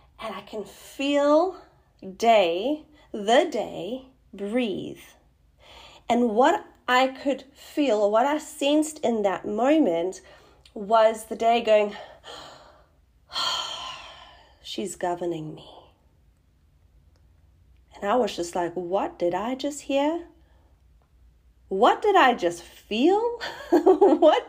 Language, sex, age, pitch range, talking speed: English, female, 30-49, 205-295 Hz, 105 wpm